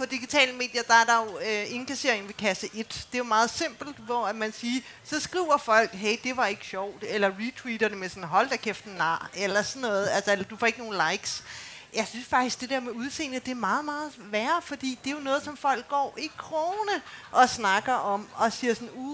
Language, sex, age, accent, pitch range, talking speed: Danish, female, 30-49, native, 215-280 Hz, 240 wpm